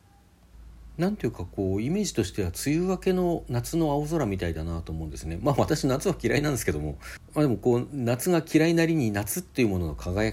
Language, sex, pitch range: Japanese, male, 85-125 Hz